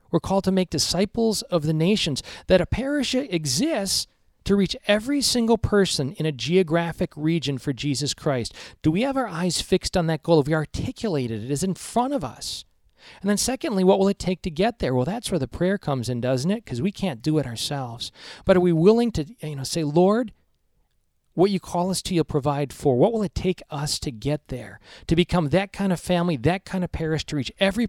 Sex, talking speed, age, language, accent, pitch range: male, 230 wpm, 40-59, English, American, 145-195 Hz